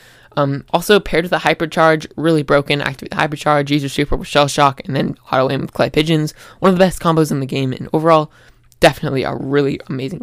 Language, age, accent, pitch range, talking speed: English, 20-39, American, 145-175 Hz, 215 wpm